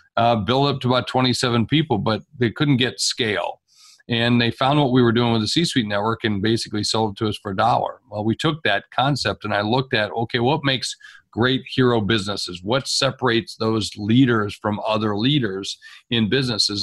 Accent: American